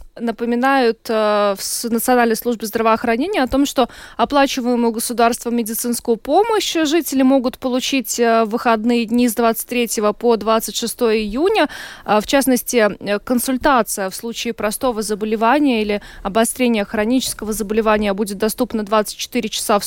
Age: 20-39